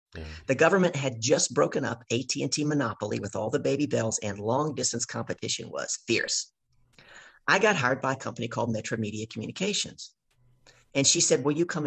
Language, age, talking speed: English, 50-69, 175 wpm